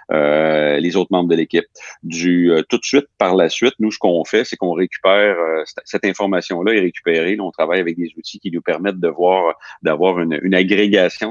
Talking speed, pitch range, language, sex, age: 220 wpm, 80-95 Hz, French, male, 40-59